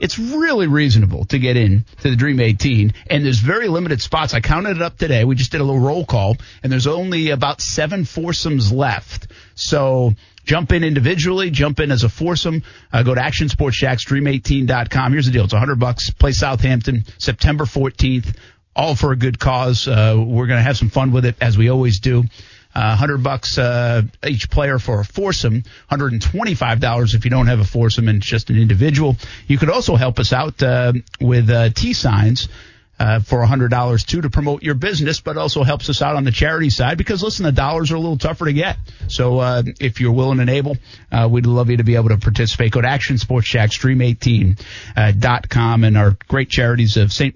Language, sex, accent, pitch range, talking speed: English, male, American, 110-135 Hz, 210 wpm